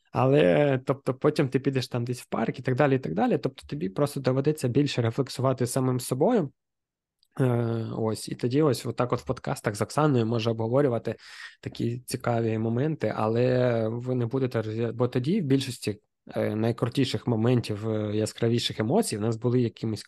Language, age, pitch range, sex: Ukrainian, 20-39, 110-130 Hz, male